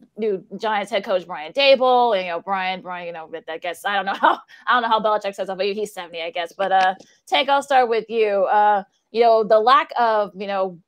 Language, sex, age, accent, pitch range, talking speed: English, female, 20-39, American, 195-235 Hz, 250 wpm